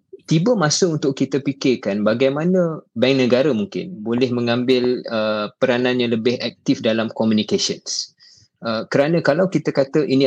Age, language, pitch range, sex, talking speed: 20-39, Malay, 110-135 Hz, male, 140 wpm